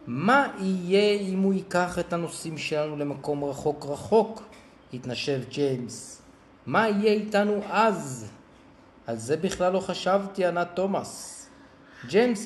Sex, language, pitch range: male, Hebrew, 140-210 Hz